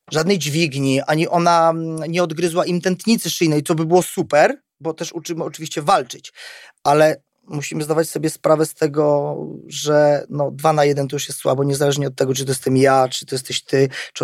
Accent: native